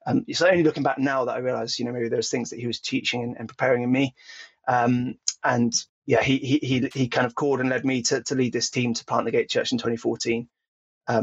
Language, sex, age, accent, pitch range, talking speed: English, male, 30-49, British, 120-150 Hz, 265 wpm